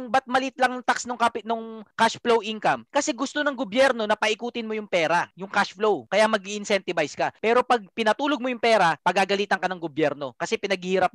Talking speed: 205 wpm